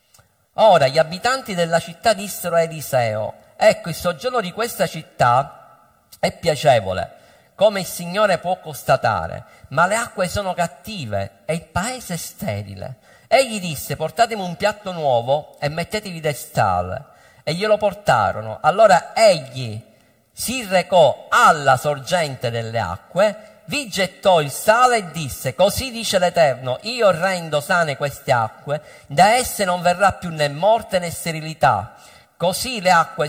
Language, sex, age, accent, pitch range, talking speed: Italian, male, 50-69, native, 150-215 Hz, 140 wpm